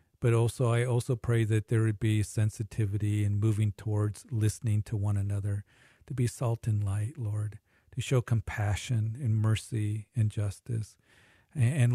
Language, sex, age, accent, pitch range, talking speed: English, male, 40-59, American, 105-115 Hz, 155 wpm